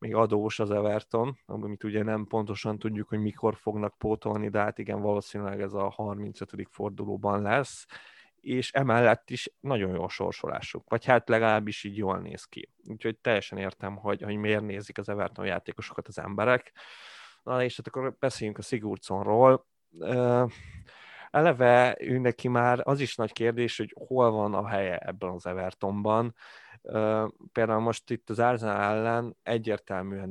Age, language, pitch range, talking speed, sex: 20-39, Hungarian, 100-115 Hz, 150 wpm, male